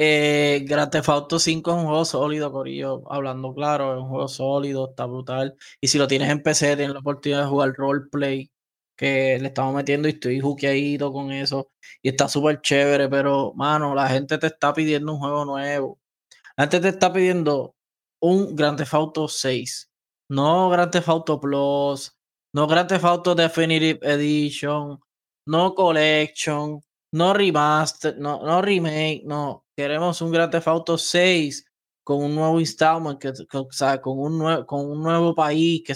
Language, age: Spanish, 20-39